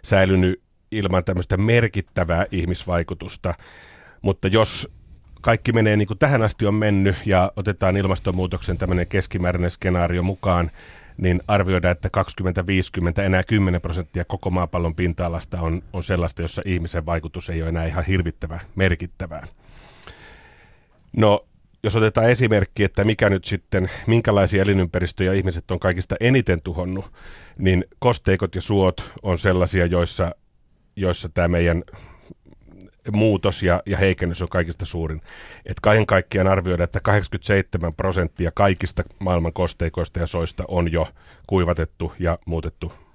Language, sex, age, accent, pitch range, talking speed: Finnish, male, 30-49, native, 85-100 Hz, 130 wpm